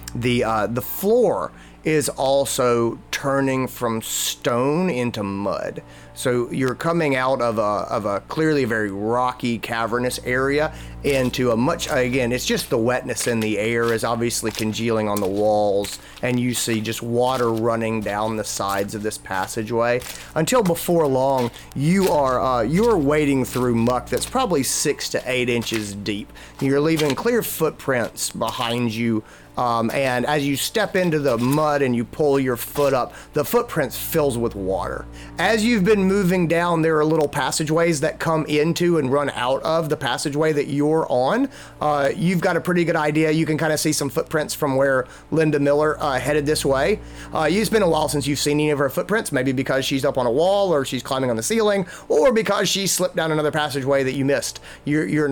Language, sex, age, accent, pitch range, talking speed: English, male, 30-49, American, 120-155 Hz, 190 wpm